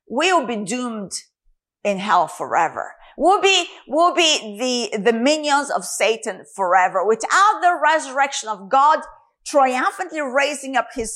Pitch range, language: 235-330 Hz, English